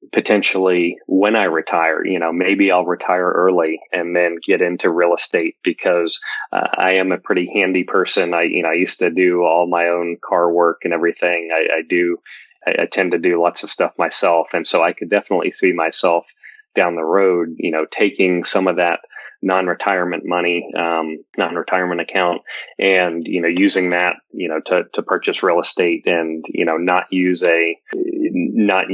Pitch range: 85-95 Hz